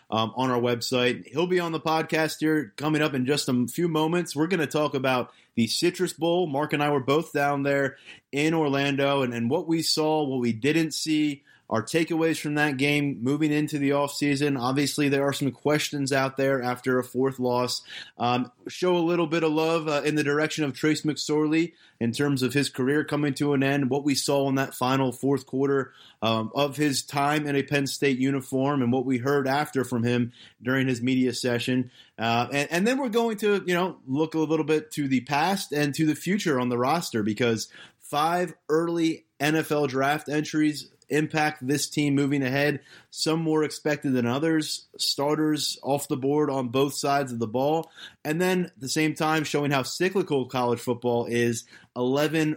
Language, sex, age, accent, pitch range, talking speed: English, male, 30-49, American, 120-150 Hz, 200 wpm